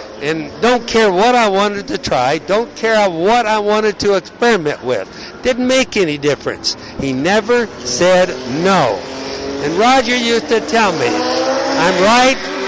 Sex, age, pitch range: male, 60-79, 175-230 Hz